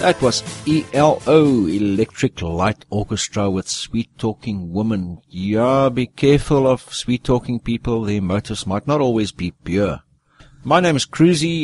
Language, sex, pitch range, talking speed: English, male, 110-140 Hz, 135 wpm